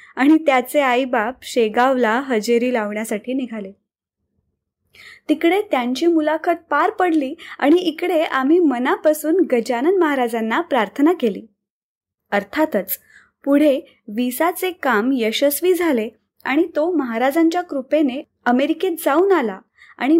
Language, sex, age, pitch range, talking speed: Marathi, female, 20-39, 235-310 Hz, 100 wpm